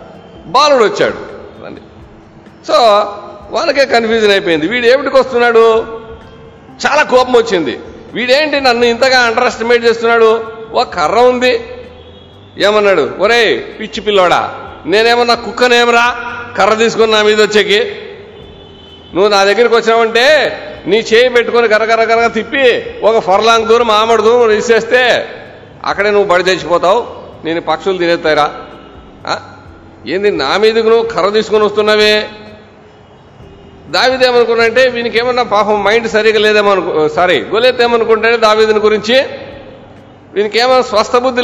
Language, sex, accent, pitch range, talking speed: Telugu, male, native, 210-260 Hz, 110 wpm